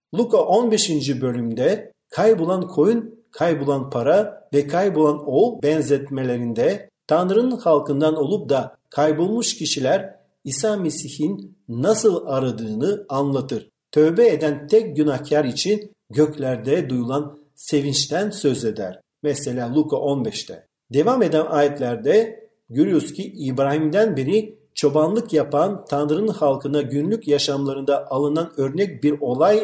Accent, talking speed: native, 105 wpm